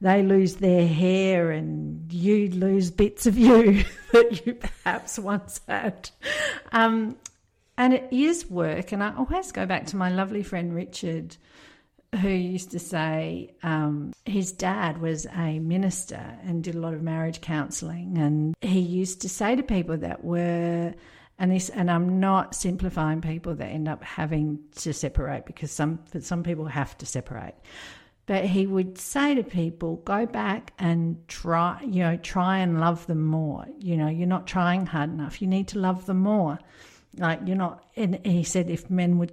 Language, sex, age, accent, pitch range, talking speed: English, female, 50-69, Australian, 165-200 Hz, 175 wpm